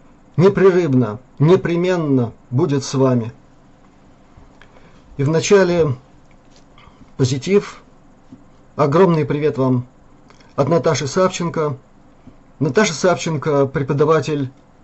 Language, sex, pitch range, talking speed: Russian, male, 135-165 Hz, 70 wpm